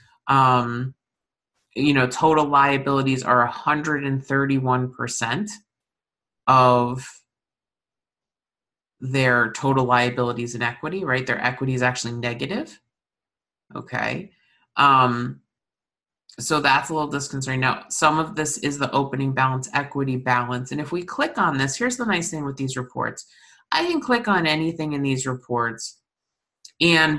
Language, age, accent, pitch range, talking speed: English, 30-49, American, 125-150 Hz, 130 wpm